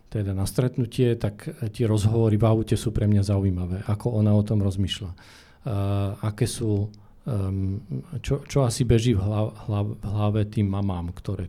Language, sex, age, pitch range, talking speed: Slovak, male, 40-59, 100-120 Hz, 165 wpm